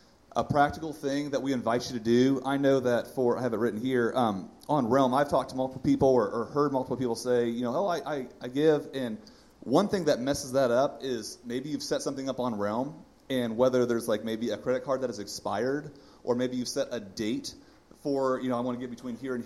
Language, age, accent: English, 30-49, American